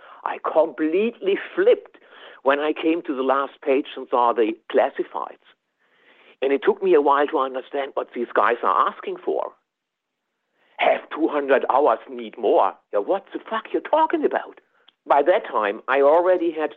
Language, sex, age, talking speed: English, male, 60-79, 165 wpm